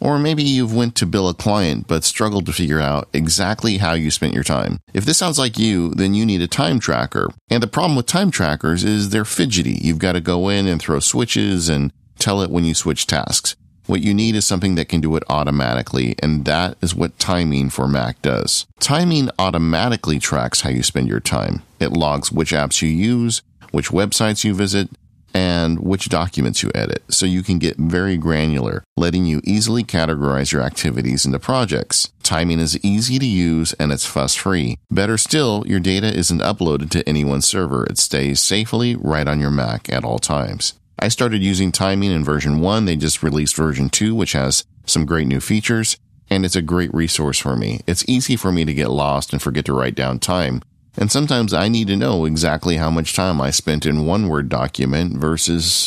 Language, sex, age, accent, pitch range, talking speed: English, male, 40-59, American, 75-105 Hz, 205 wpm